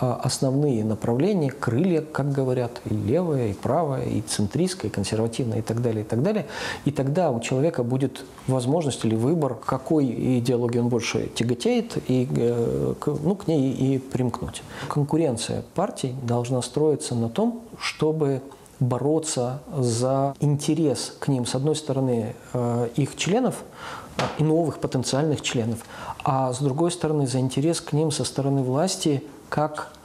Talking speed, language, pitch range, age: 140 wpm, Russian, 125-155 Hz, 40-59